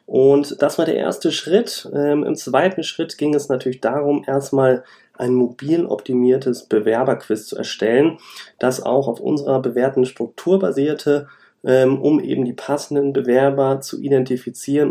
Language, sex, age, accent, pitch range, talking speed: German, male, 30-49, German, 125-150 Hz, 145 wpm